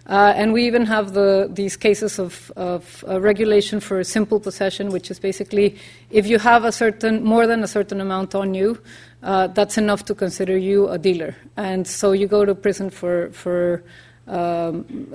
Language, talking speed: English, 190 wpm